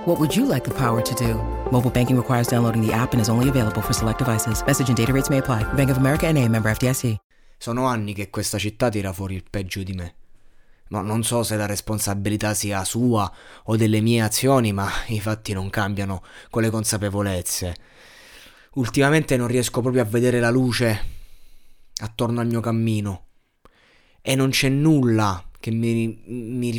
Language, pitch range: Italian, 105-125 Hz